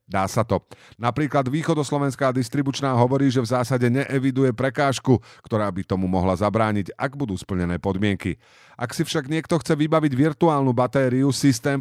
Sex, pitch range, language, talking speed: male, 110-135 Hz, Slovak, 150 wpm